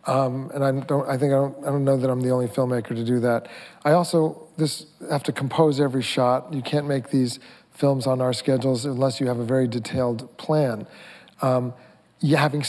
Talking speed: 215 wpm